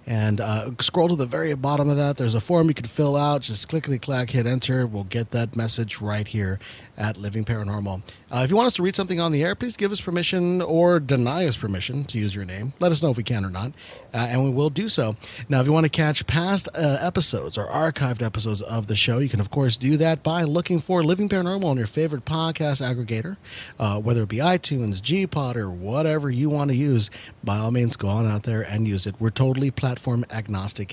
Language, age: English, 30-49